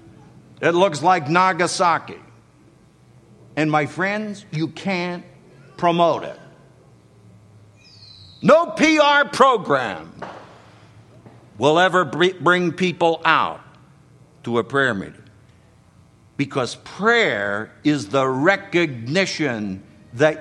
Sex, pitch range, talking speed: male, 140-225 Hz, 85 wpm